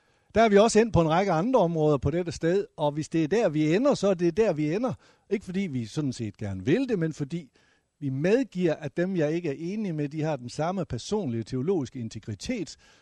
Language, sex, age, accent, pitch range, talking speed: Danish, male, 60-79, native, 130-175 Hz, 240 wpm